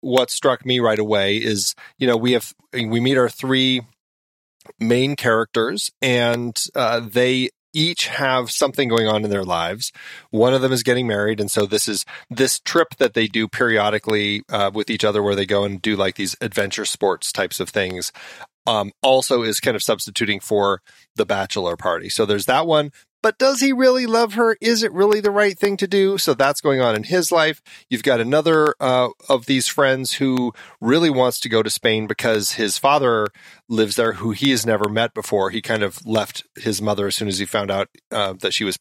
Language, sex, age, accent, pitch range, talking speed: English, male, 30-49, American, 105-140 Hz, 210 wpm